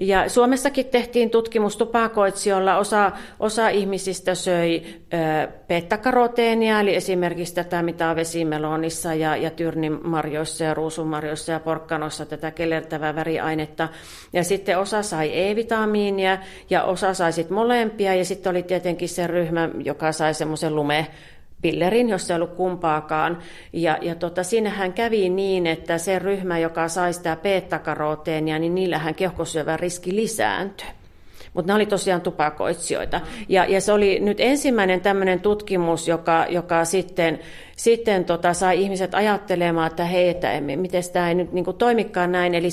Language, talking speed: Finnish, 140 wpm